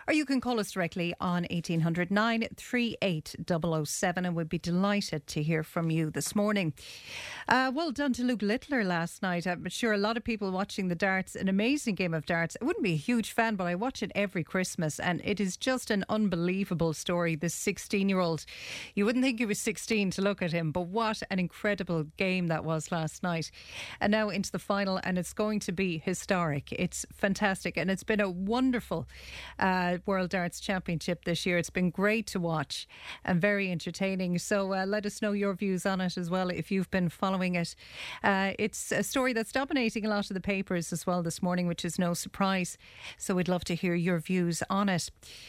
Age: 40-59